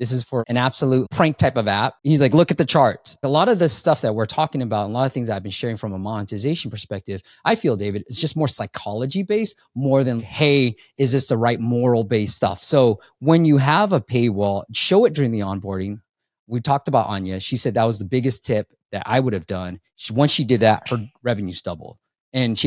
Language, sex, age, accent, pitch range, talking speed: English, male, 20-39, American, 105-150 Hz, 235 wpm